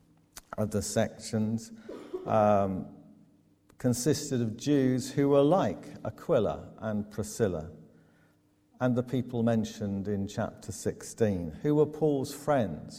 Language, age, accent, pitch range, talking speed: English, 50-69, British, 95-130 Hz, 110 wpm